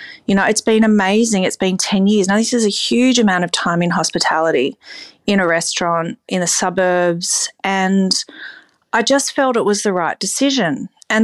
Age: 30-49